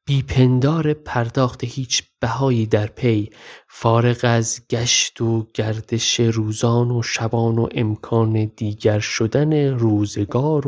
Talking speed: 105 wpm